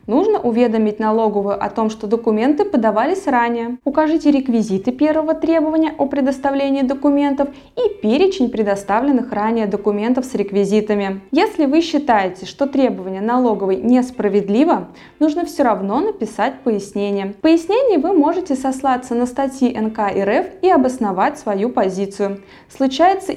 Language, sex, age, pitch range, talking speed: Russian, female, 20-39, 215-290 Hz, 125 wpm